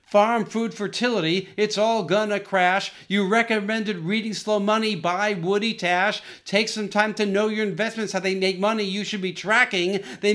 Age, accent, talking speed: 50-69, American, 180 wpm